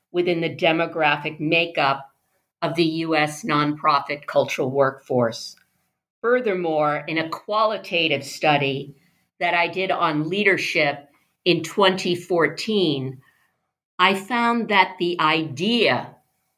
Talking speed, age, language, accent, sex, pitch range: 100 wpm, 50-69, English, American, female, 150-195 Hz